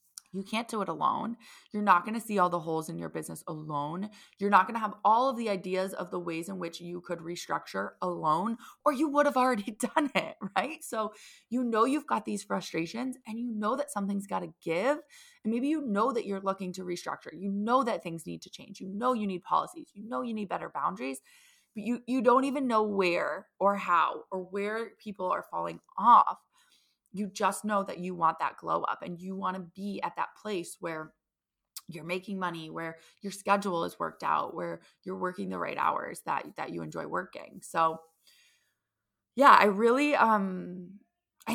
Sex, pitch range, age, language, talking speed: female, 170-225 Hz, 20-39, English, 210 wpm